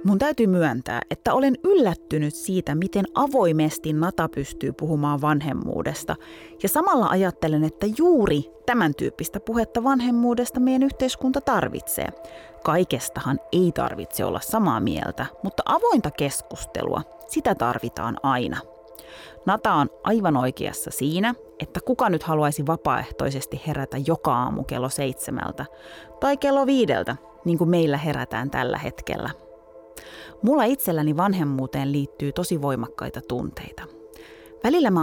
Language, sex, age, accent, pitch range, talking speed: Finnish, female, 30-49, native, 130-180 Hz, 120 wpm